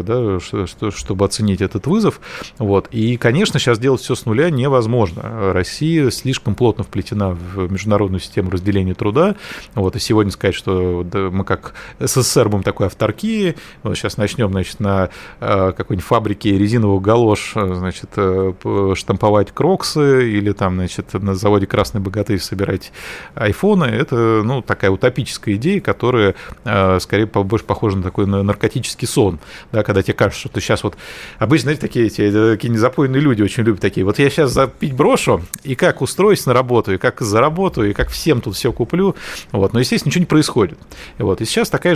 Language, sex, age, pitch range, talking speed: Russian, male, 30-49, 100-135 Hz, 175 wpm